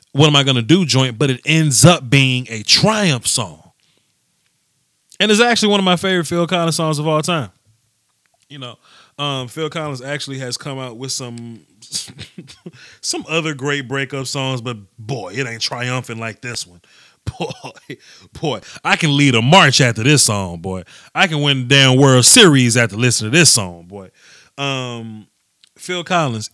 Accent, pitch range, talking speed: American, 115-140 Hz, 180 wpm